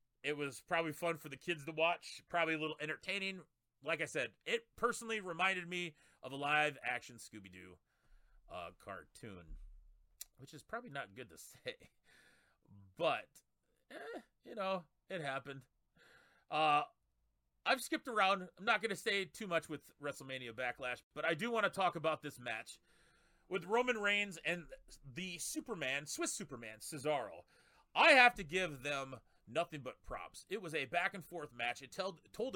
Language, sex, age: English, male, 30-49